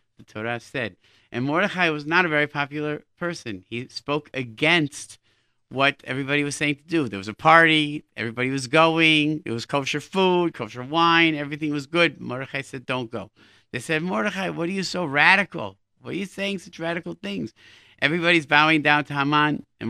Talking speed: 185 wpm